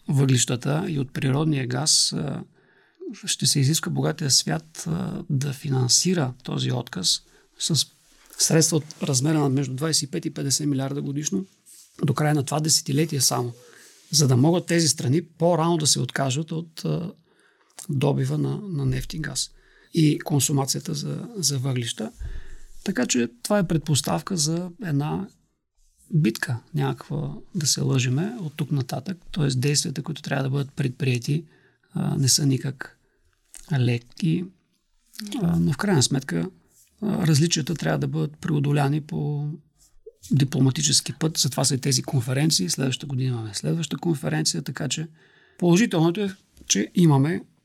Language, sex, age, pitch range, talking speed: Bulgarian, male, 40-59, 135-165 Hz, 130 wpm